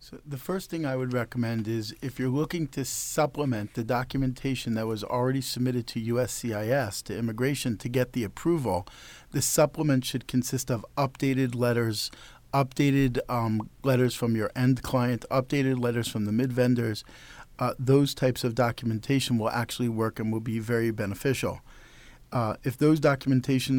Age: 50-69